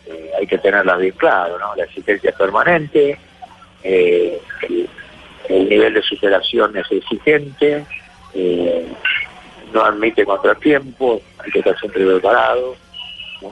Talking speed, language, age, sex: 125 wpm, Spanish, 50-69, male